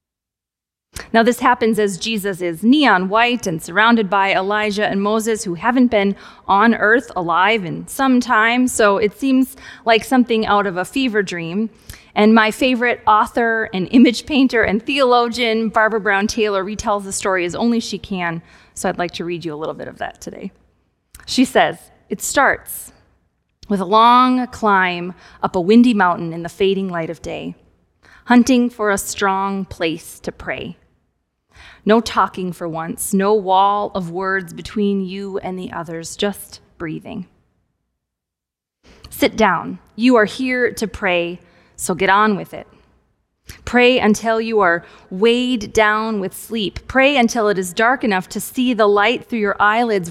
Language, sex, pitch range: English, female, 185-230 Hz